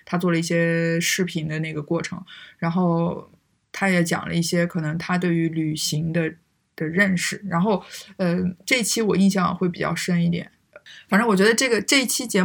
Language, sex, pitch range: Chinese, female, 170-200 Hz